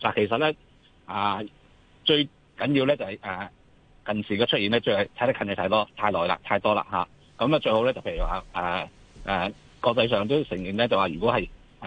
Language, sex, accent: Chinese, male, native